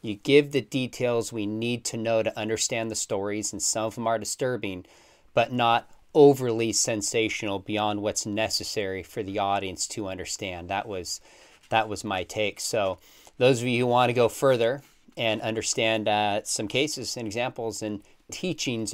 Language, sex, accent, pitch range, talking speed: English, male, American, 105-130 Hz, 170 wpm